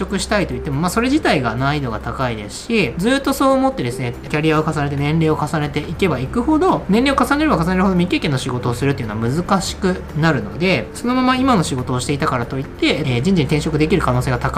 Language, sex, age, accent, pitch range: Japanese, male, 20-39, native, 125-195 Hz